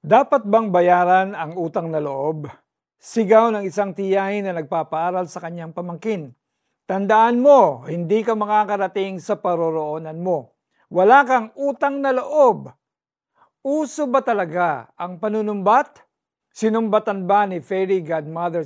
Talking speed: 125 wpm